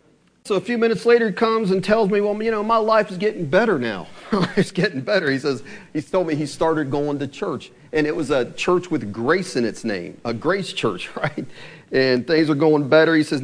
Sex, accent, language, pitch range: male, American, English, 120-160 Hz